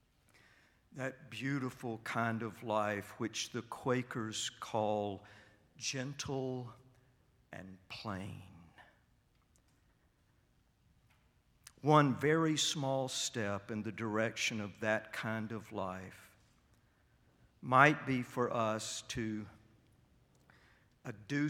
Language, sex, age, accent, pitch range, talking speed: English, male, 50-69, American, 110-130 Hz, 85 wpm